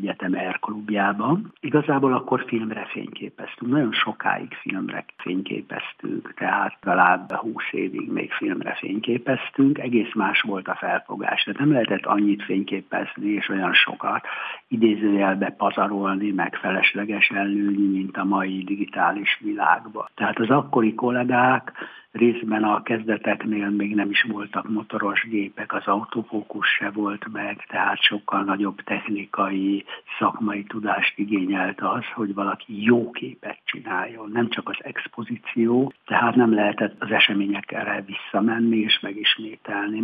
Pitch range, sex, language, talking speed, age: 100-115 Hz, male, Hungarian, 125 wpm, 60-79